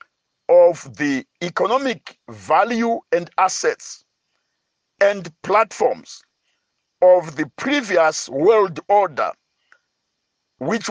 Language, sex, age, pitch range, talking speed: English, male, 60-79, 180-260 Hz, 75 wpm